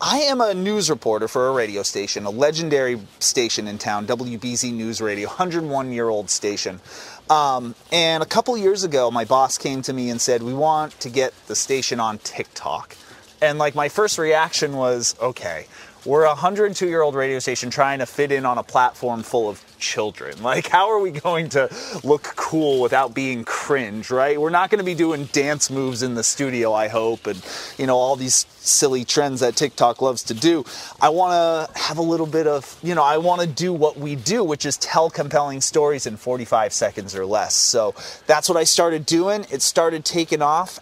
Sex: male